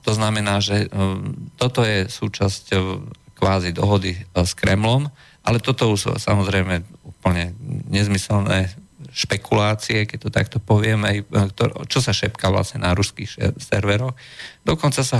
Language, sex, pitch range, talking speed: Slovak, male, 95-115 Hz, 120 wpm